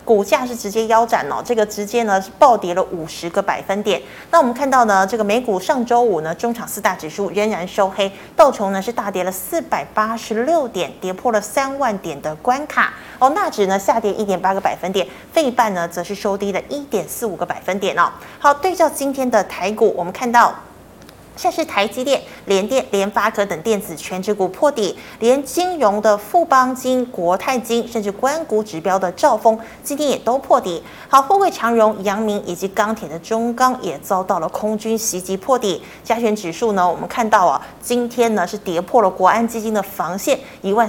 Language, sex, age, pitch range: Chinese, female, 30-49, 195-255 Hz